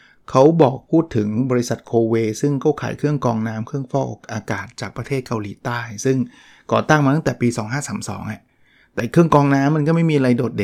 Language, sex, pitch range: Thai, male, 115-140 Hz